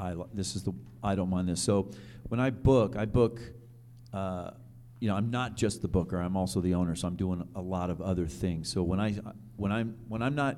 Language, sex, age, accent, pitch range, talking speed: English, male, 40-59, American, 95-120 Hz, 235 wpm